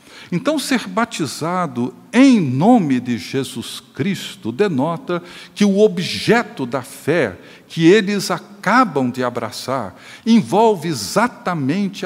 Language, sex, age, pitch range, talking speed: Portuguese, male, 60-79, 135-200 Hz, 105 wpm